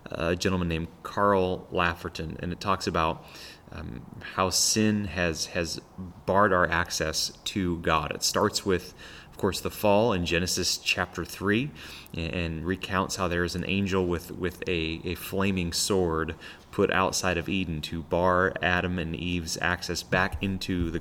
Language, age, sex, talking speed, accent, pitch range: English, 30-49, male, 155 wpm, American, 85-100 Hz